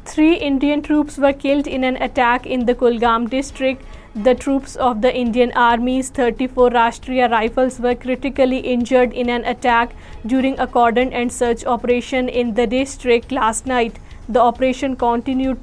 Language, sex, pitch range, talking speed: Urdu, female, 240-260 Hz, 155 wpm